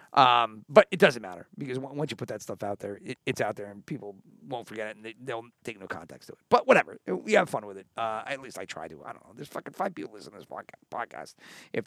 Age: 40-59